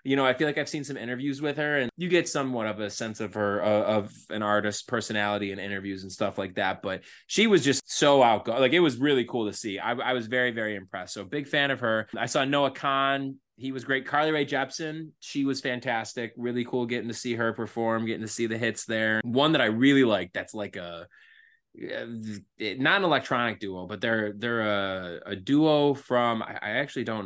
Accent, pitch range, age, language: American, 110-135 Hz, 20-39, English